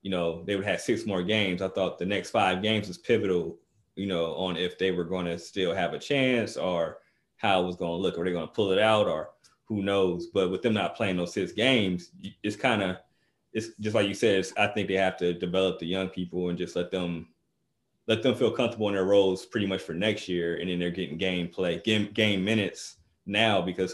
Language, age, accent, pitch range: English, 20-39, American, 90-105 Hz